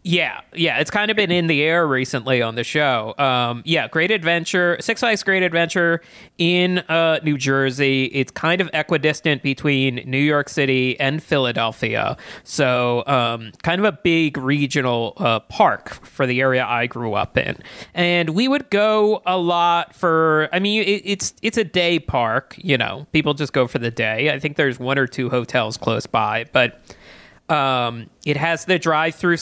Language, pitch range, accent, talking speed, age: English, 125-170 Hz, American, 180 wpm, 30-49